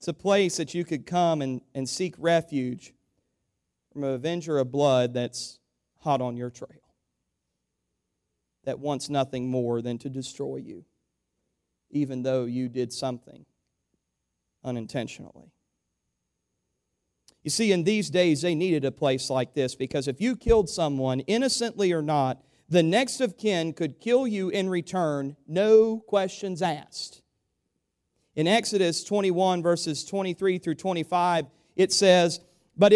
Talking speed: 140 wpm